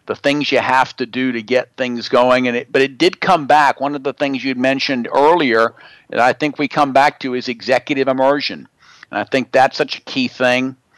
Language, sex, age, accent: English, male, 50-69, American